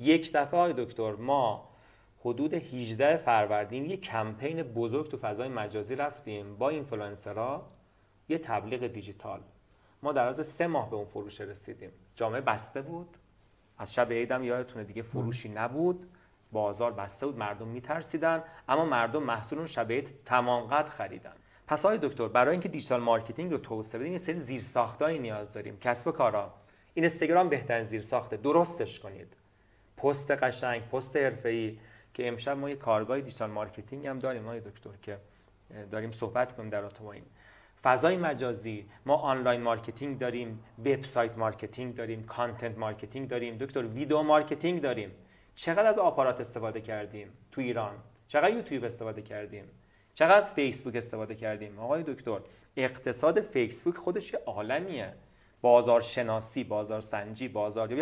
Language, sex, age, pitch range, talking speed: English, male, 30-49, 110-140 Hz, 145 wpm